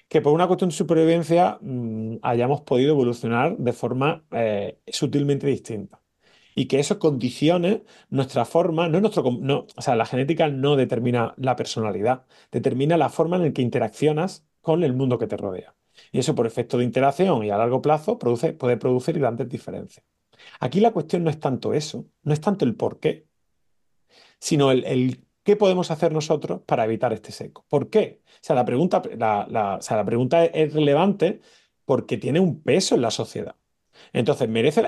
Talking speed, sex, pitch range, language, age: 185 wpm, male, 125-170 Hz, Spanish, 30-49